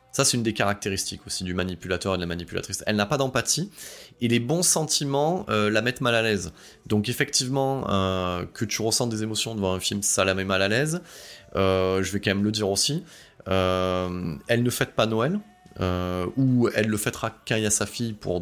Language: French